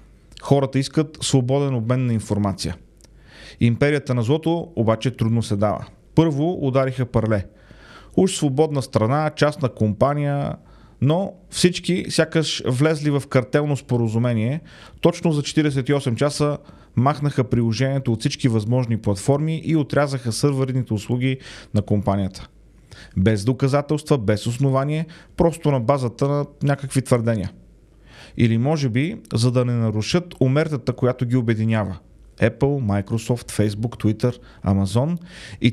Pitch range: 115-145 Hz